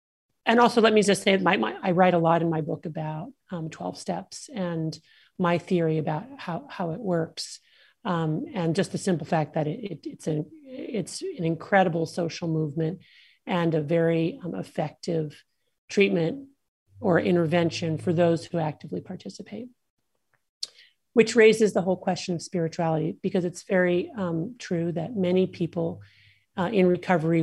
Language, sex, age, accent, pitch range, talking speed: English, male, 40-59, American, 165-190 Hz, 150 wpm